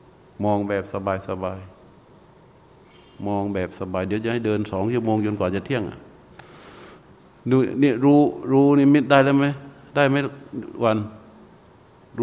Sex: male